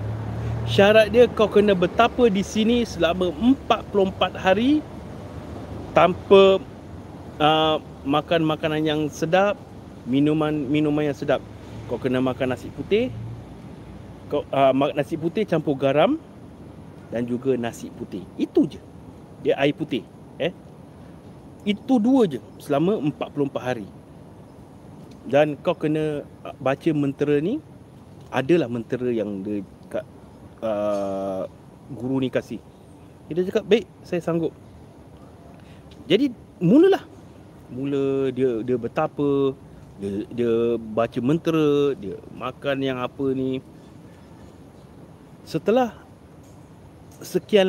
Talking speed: 105 wpm